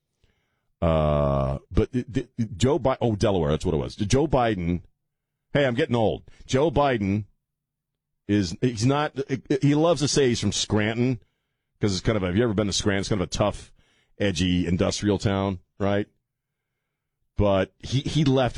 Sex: male